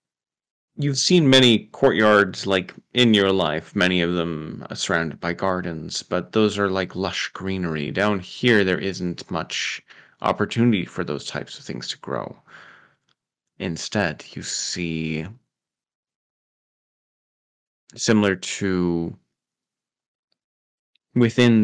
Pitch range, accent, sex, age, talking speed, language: 85-105 Hz, American, male, 20-39, 110 wpm, English